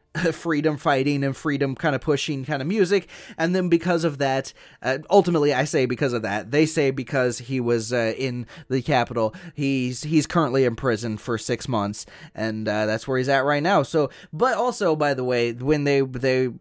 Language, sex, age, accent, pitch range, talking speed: English, male, 20-39, American, 135-175 Hz, 200 wpm